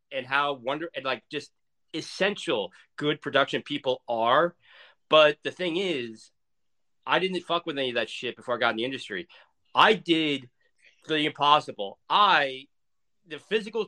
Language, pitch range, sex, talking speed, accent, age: English, 125-165 Hz, male, 155 wpm, American, 40-59